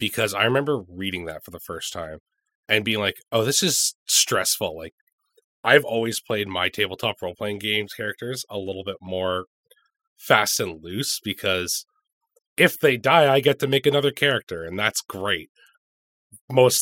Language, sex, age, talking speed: English, male, 30-49, 170 wpm